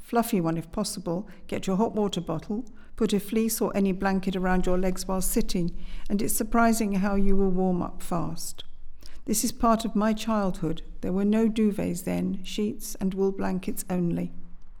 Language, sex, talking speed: English, female, 180 wpm